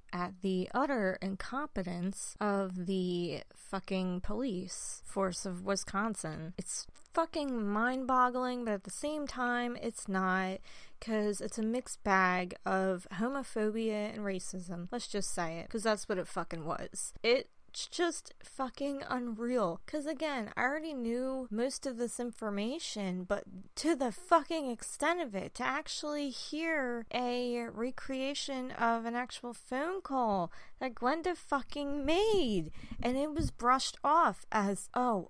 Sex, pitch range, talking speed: female, 200-280 Hz, 140 wpm